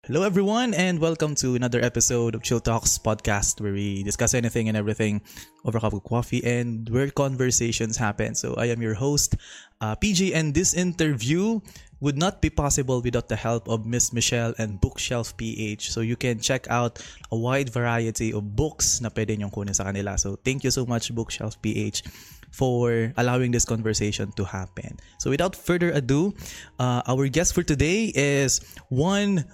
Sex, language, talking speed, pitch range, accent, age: male, Filipino, 180 wpm, 110-140 Hz, native, 20-39